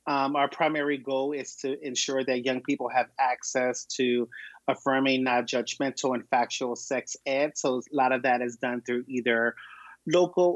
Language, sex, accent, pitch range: English, male, American, 130-160 Hz